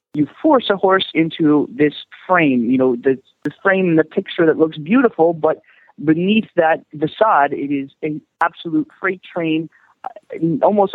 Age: 40-59